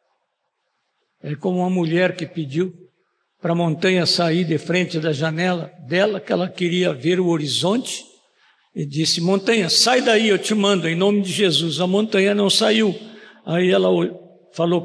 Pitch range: 170-220 Hz